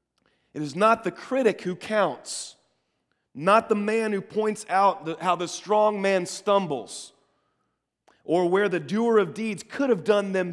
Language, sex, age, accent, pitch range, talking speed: English, male, 30-49, American, 190-235 Hz, 160 wpm